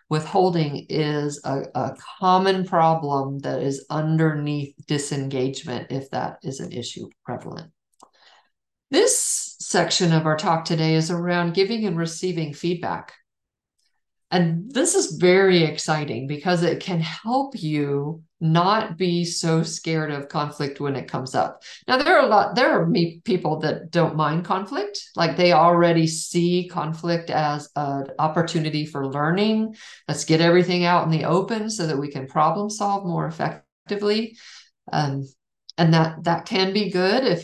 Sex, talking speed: female, 150 wpm